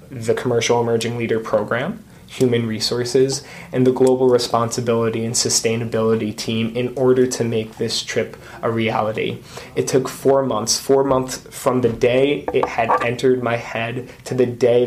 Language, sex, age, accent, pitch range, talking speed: English, male, 20-39, American, 115-130 Hz, 155 wpm